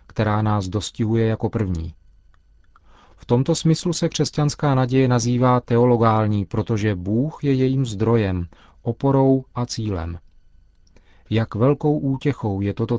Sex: male